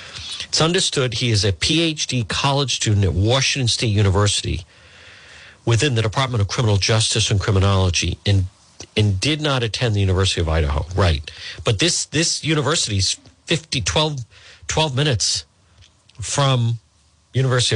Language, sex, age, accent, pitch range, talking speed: English, male, 50-69, American, 95-130 Hz, 140 wpm